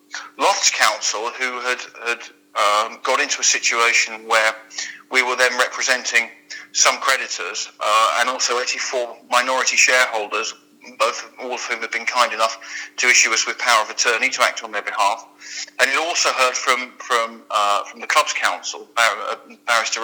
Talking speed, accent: 165 wpm, British